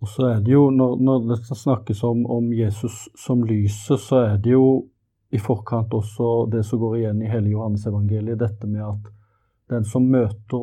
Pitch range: 110-125 Hz